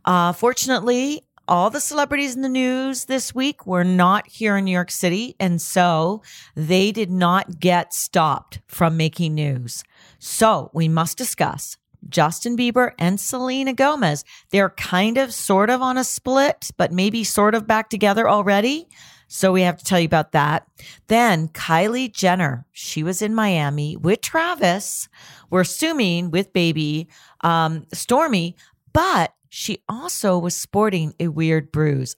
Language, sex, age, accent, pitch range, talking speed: English, female, 40-59, American, 160-225 Hz, 155 wpm